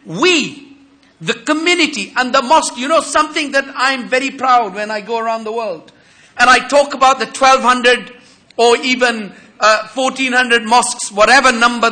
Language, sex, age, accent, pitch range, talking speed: English, male, 50-69, South African, 230-280 Hz, 160 wpm